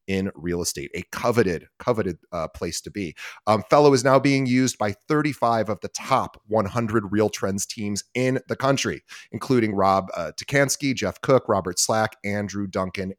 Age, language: 30-49, English